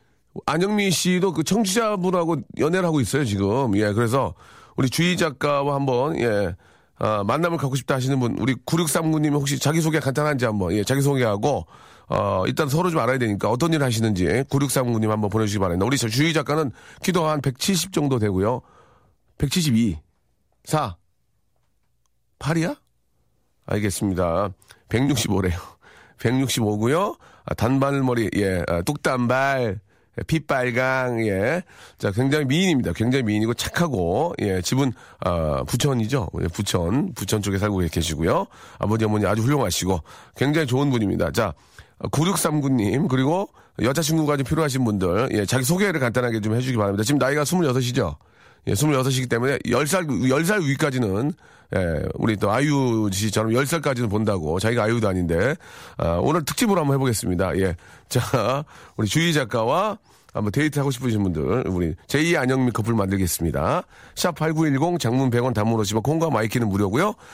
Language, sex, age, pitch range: Korean, male, 40-59, 105-145 Hz